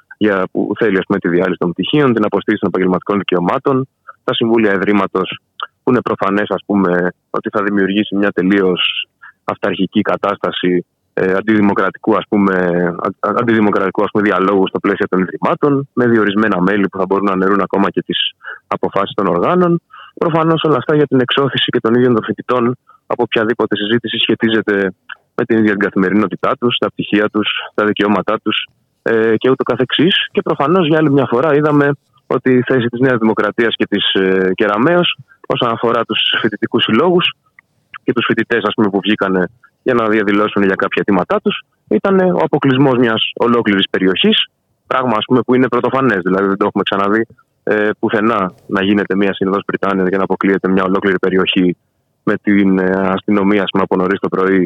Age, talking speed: 20-39, 165 wpm